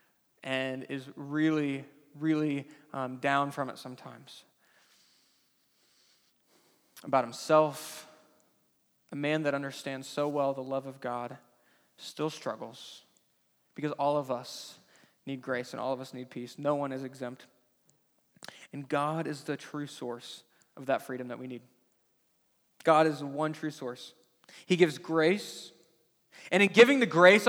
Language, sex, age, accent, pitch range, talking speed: English, male, 20-39, American, 140-205 Hz, 140 wpm